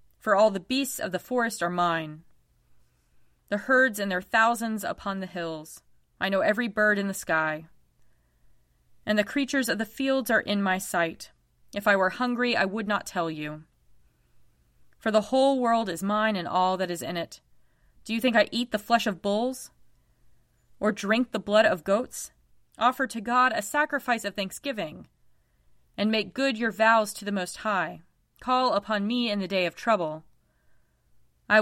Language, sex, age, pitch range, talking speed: English, female, 30-49, 165-225 Hz, 180 wpm